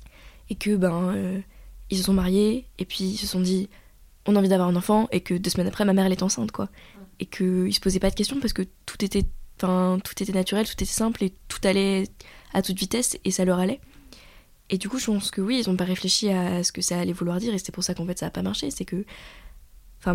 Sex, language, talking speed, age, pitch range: female, French, 265 wpm, 20-39, 175-195 Hz